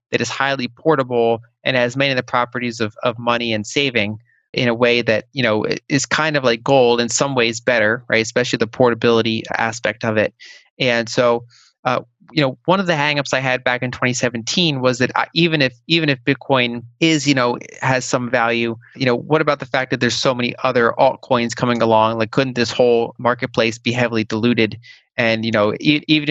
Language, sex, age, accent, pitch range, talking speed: English, male, 30-49, American, 115-130 Hz, 210 wpm